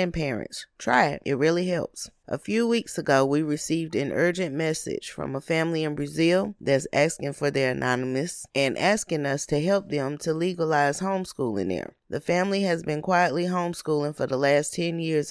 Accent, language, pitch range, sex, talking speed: American, English, 145-175 Hz, female, 185 wpm